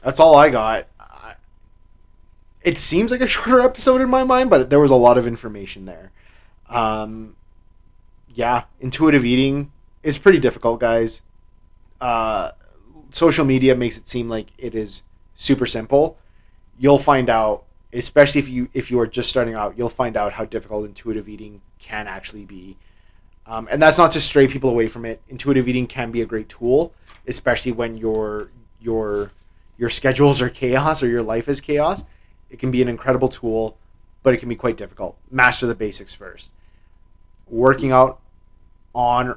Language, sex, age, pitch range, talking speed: English, male, 20-39, 100-130 Hz, 170 wpm